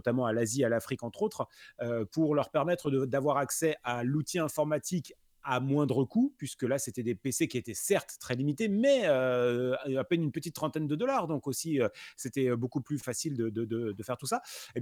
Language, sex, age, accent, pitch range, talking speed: French, male, 30-49, French, 125-175 Hz, 220 wpm